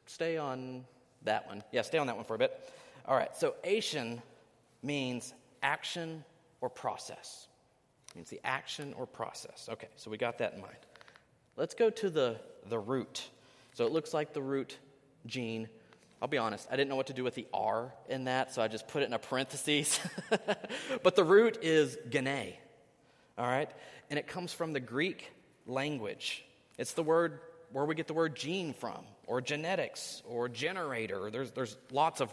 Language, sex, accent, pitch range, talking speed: English, male, American, 120-165 Hz, 185 wpm